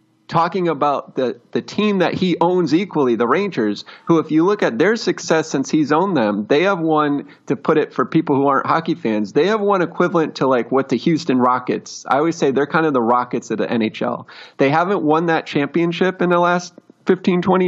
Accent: American